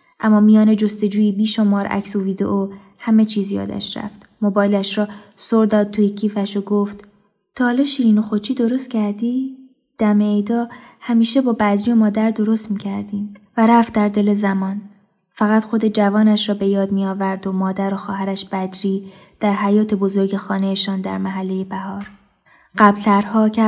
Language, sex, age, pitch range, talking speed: Persian, female, 20-39, 195-220 Hz, 155 wpm